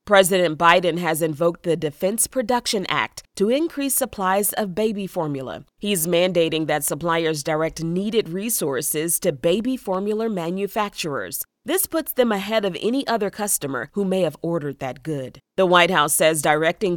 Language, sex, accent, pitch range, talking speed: English, female, American, 160-205 Hz, 155 wpm